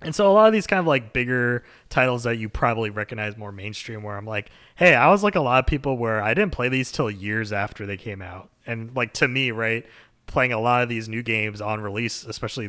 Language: English